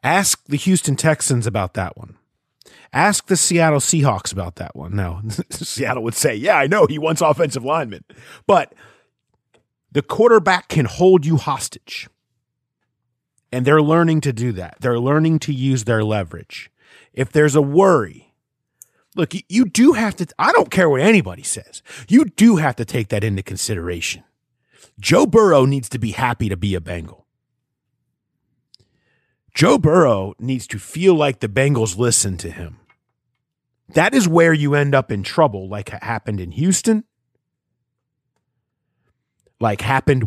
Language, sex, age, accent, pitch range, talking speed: English, male, 30-49, American, 110-155 Hz, 155 wpm